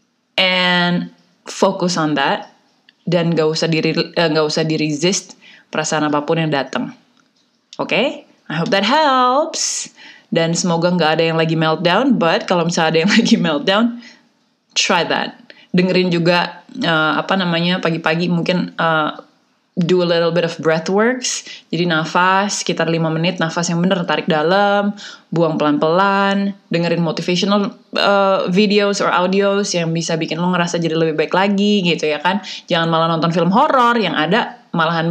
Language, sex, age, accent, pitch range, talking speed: Indonesian, female, 20-39, native, 160-210 Hz, 155 wpm